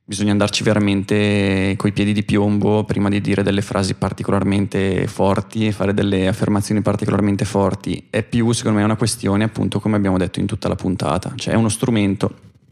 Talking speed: 180 wpm